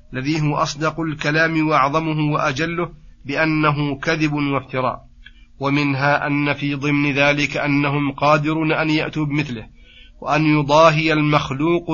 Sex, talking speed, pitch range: male, 110 wpm, 140-160 Hz